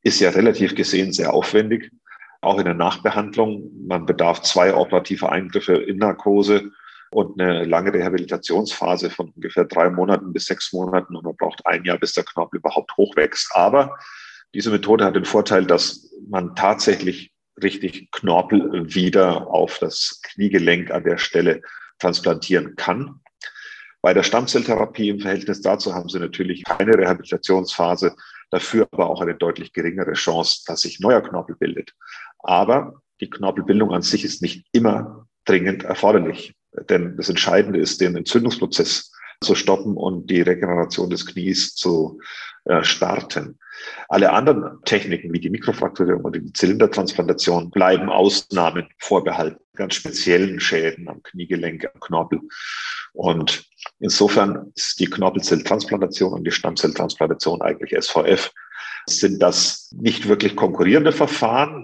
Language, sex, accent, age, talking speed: German, male, German, 40-59, 140 wpm